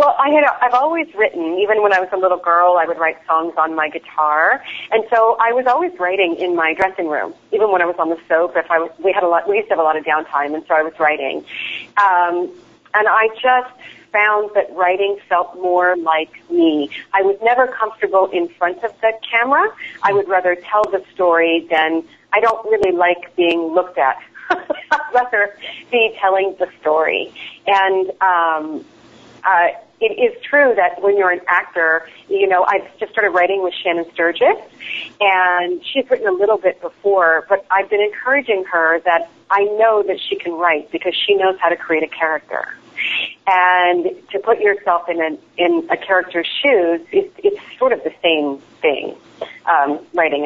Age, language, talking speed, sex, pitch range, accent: 40-59, English, 190 wpm, female, 170-220 Hz, American